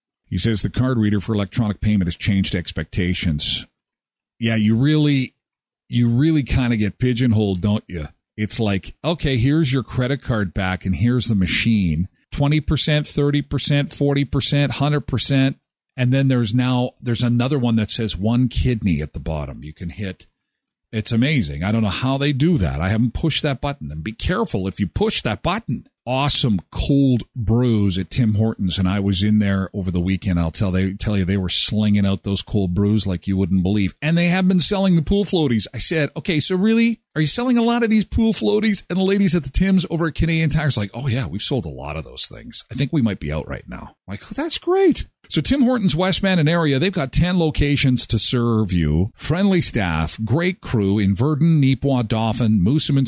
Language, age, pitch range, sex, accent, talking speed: English, 50-69, 100-155 Hz, male, American, 215 wpm